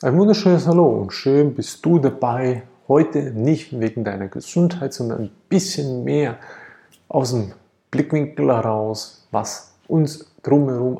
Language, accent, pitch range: German, German, 115-145 Hz